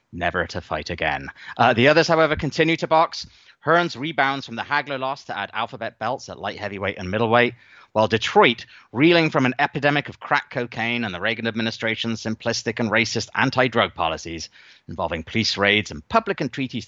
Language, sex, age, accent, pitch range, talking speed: English, male, 30-49, British, 100-145 Hz, 180 wpm